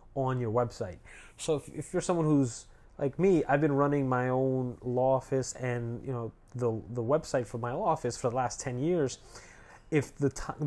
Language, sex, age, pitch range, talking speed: English, male, 30-49, 120-150 Hz, 195 wpm